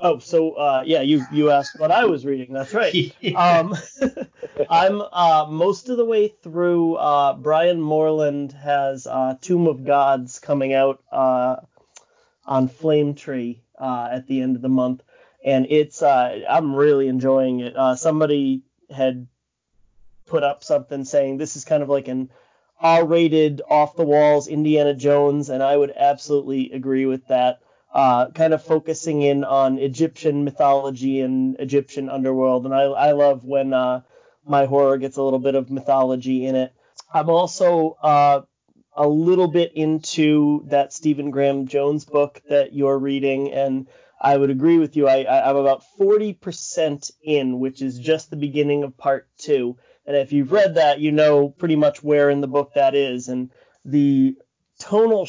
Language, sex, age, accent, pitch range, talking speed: English, male, 30-49, American, 135-155 Hz, 165 wpm